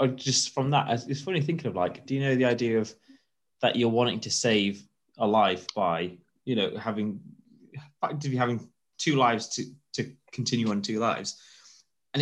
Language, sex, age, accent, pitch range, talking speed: English, male, 10-29, British, 110-135 Hz, 175 wpm